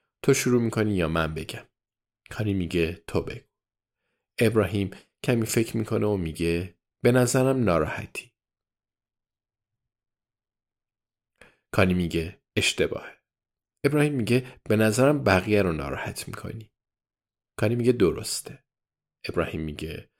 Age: 50-69